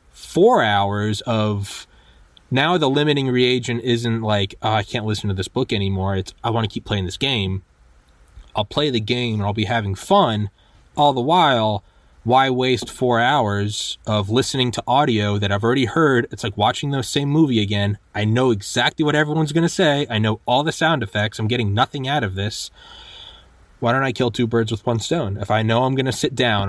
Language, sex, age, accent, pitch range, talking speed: English, male, 20-39, American, 100-130 Hz, 205 wpm